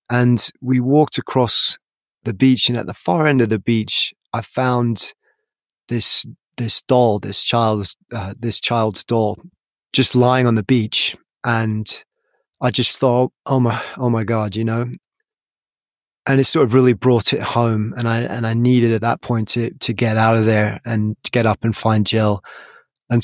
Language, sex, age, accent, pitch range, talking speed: English, male, 20-39, British, 110-130 Hz, 185 wpm